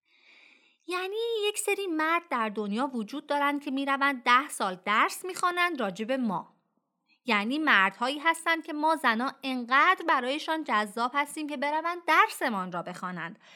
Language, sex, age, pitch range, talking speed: Persian, female, 30-49, 215-290 Hz, 140 wpm